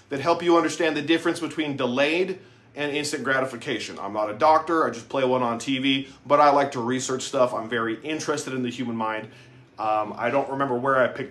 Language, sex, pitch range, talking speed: English, male, 125-165 Hz, 220 wpm